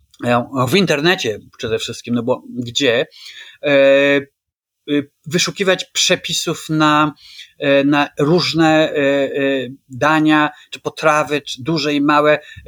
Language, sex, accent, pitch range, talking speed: Polish, male, native, 140-165 Hz, 90 wpm